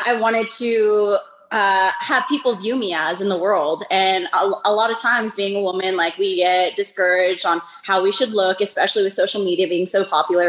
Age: 20-39